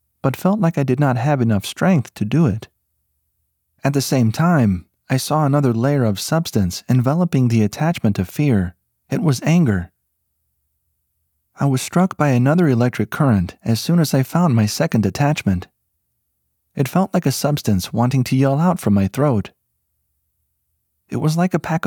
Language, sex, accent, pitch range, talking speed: English, male, American, 90-145 Hz, 170 wpm